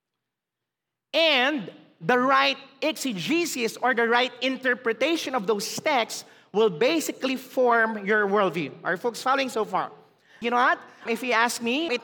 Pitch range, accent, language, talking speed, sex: 215-290 Hz, Filipino, English, 150 wpm, male